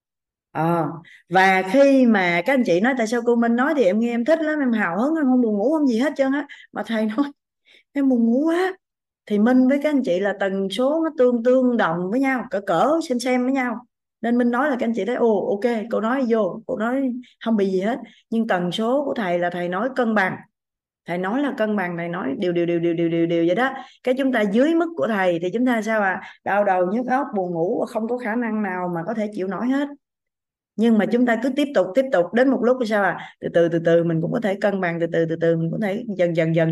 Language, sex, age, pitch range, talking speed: Vietnamese, female, 20-39, 170-245 Hz, 280 wpm